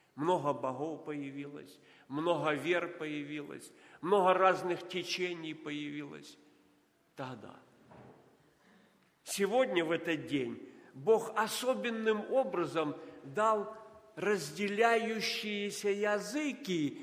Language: Russian